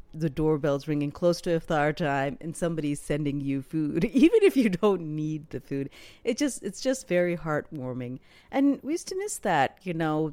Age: 40-59